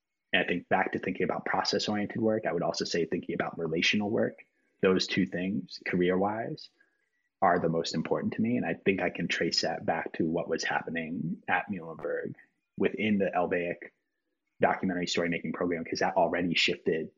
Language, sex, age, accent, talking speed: English, male, 30-49, American, 180 wpm